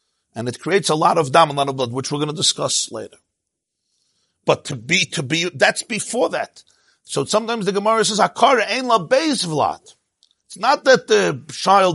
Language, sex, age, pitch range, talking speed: English, male, 50-69, 135-195 Hz, 195 wpm